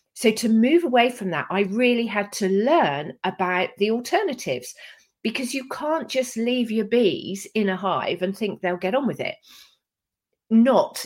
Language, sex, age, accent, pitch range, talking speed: English, female, 40-59, British, 170-235 Hz, 175 wpm